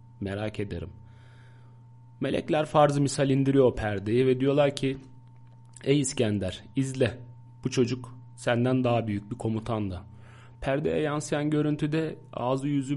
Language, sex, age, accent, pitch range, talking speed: Turkish, male, 40-59, native, 120-135 Hz, 125 wpm